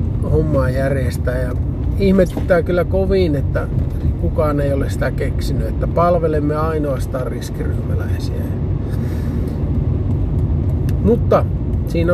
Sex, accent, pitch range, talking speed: male, native, 80-135 Hz, 90 wpm